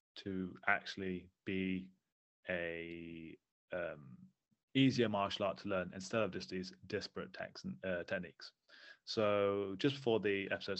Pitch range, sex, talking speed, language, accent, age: 95-120 Hz, male, 130 wpm, English, British, 20-39